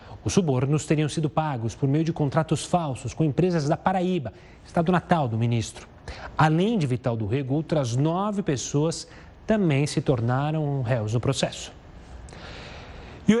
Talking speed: 150 wpm